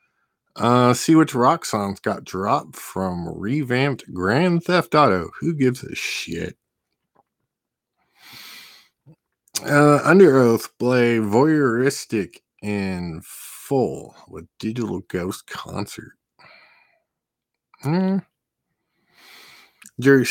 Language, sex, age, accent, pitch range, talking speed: English, male, 50-69, American, 95-135 Hz, 85 wpm